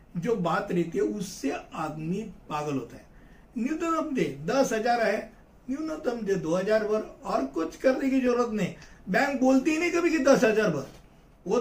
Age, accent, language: 60-79, native, Hindi